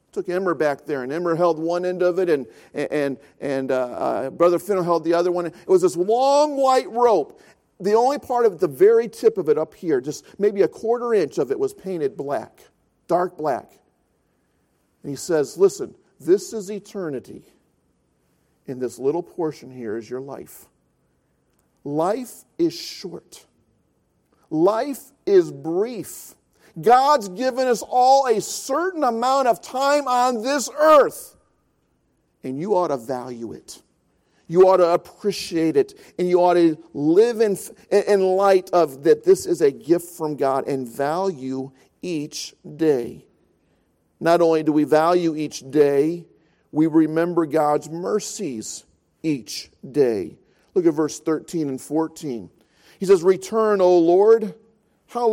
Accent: American